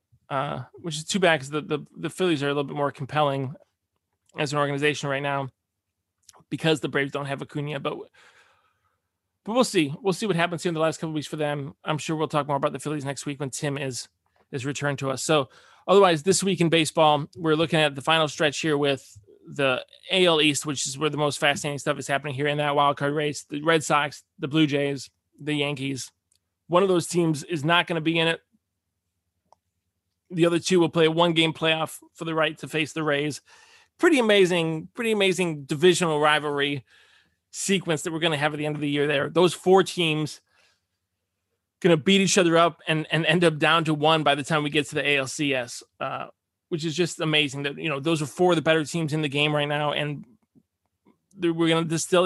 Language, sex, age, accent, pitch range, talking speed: English, male, 20-39, American, 140-170 Hz, 225 wpm